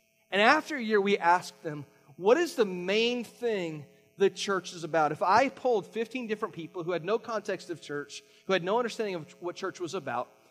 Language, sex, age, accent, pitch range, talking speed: English, male, 30-49, American, 170-215 Hz, 210 wpm